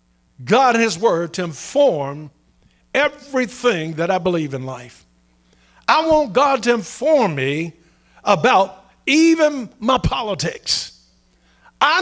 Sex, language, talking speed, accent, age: male, English, 115 wpm, American, 50-69